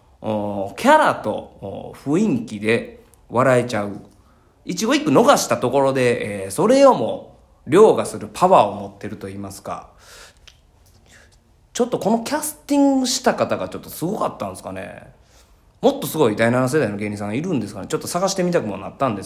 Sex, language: male, Japanese